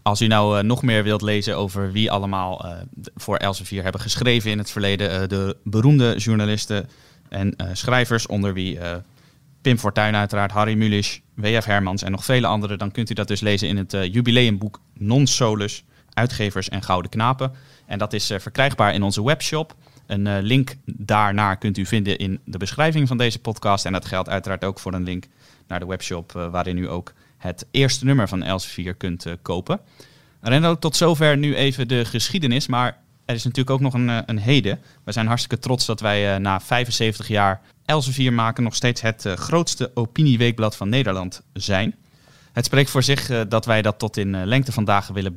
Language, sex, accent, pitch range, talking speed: Dutch, male, Dutch, 100-125 Hz, 195 wpm